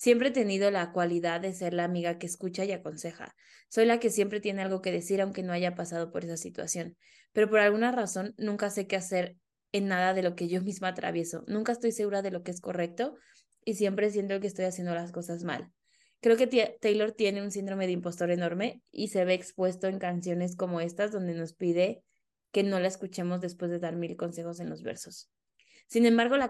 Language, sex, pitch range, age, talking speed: Spanish, female, 175-205 Hz, 20-39, 215 wpm